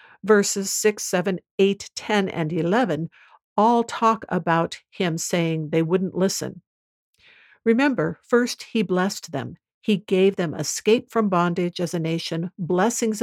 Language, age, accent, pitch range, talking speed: English, 50-69, American, 170-220 Hz, 135 wpm